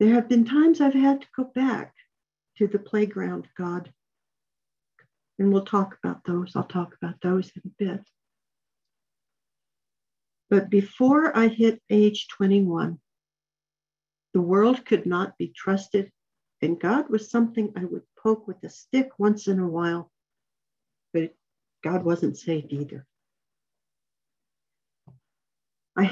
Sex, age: female, 60-79